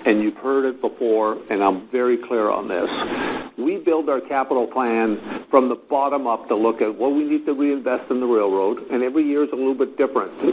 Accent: American